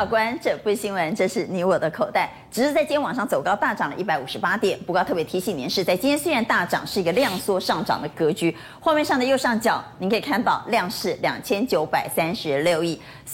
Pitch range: 180-270 Hz